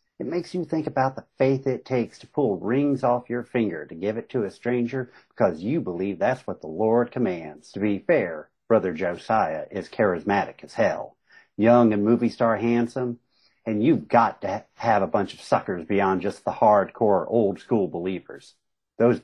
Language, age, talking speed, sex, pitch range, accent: English, 50-69, 185 wpm, male, 100-125 Hz, American